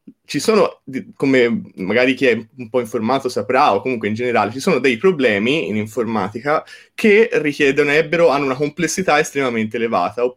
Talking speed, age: 150 wpm, 20-39